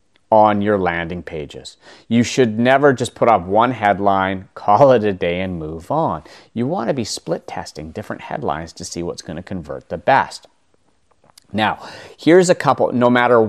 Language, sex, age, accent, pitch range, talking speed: English, male, 30-49, American, 95-125 Hz, 180 wpm